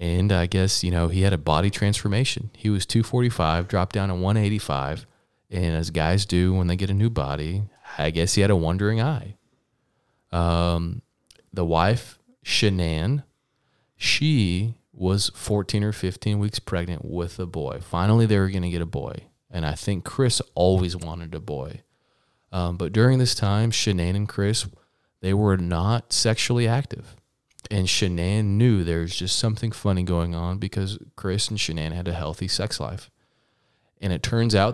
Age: 30-49